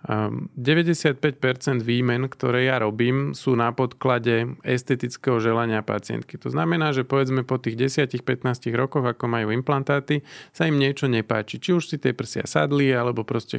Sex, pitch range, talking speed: male, 120-135 Hz, 150 wpm